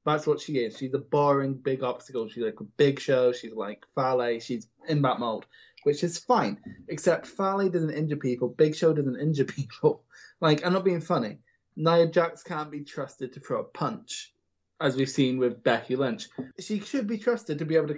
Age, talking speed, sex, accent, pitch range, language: 20-39, 205 wpm, male, British, 130-175 Hz, English